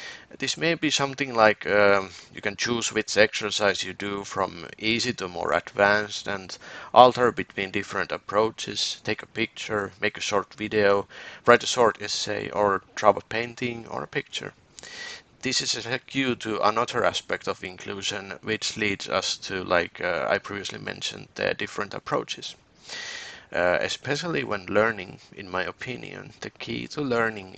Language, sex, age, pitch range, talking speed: Finnish, male, 30-49, 100-120 Hz, 160 wpm